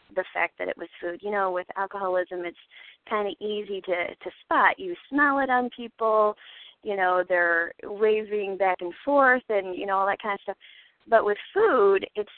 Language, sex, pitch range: English, female, 185-220 Hz